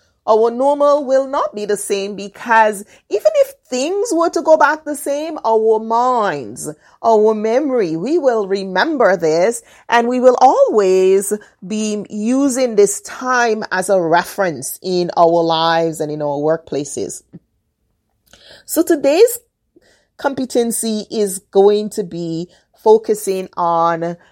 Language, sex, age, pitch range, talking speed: English, female, 30-49, 180-235 Hz, 130 wpm